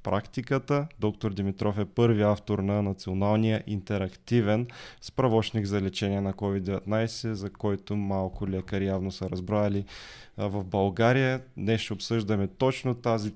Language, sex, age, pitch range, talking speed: Bulgarian, male, 20-39, 100-115 Hz, 125 wpm